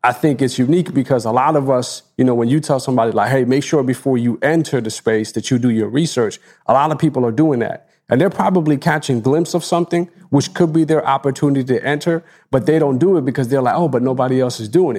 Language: English